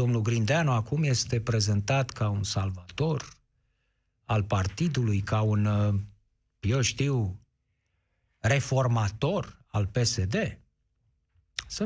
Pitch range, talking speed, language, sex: 115-145 Hz, 90 wpm, Romanian, male